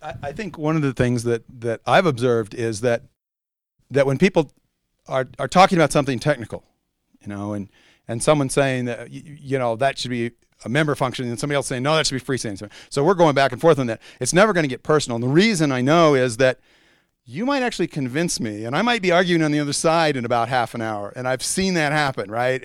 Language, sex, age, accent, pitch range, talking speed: English, male, 40-59, American, 125-170 Hz, 245 wpm